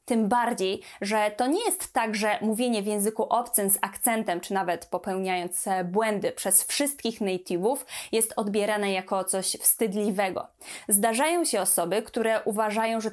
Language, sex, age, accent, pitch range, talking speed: Polish, female, 20-39, native, 200-250 Hz, 145 wpm